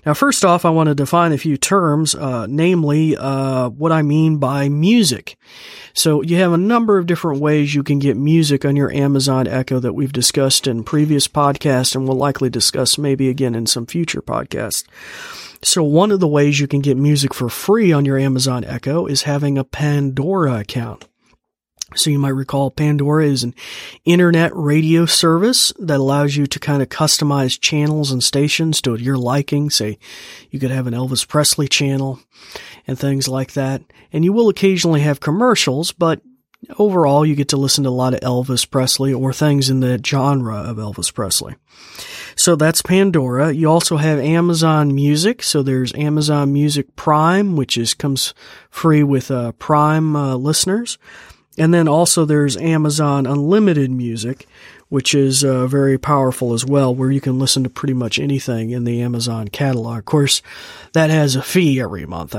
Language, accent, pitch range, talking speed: English, American, 130-155 Hz, 180 wpm